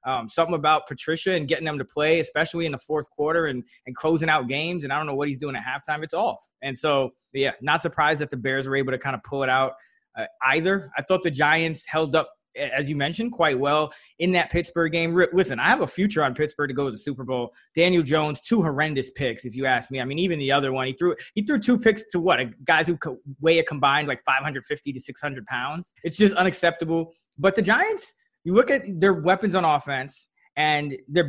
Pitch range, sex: 145-180 Hz, male